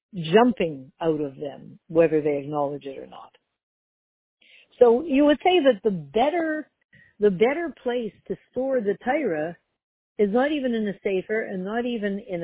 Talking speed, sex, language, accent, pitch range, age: 165 wpm, female, English, American, 170-240 Hz, 60-79